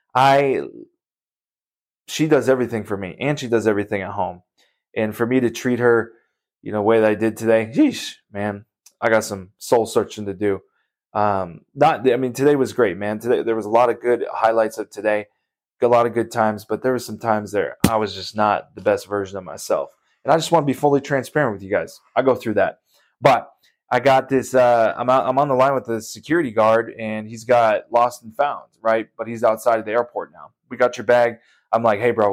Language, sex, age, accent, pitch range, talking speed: English, male, 20-39, American, 105-120 Hz, 230 wpm